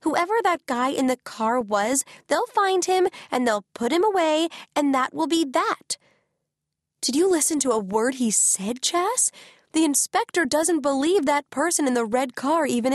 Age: 20-39